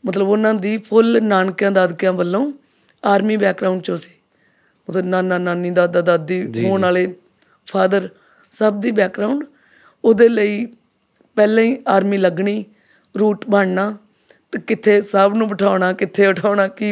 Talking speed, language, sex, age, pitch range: 135 wpm, Punjabi, female, 20-39, 185-220 Hz